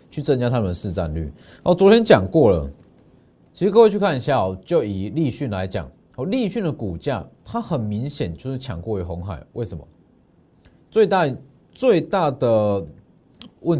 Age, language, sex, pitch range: 30-49, Chinese, male, 100-160 Hz